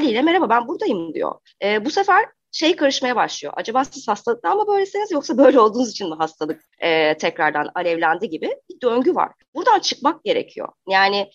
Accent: native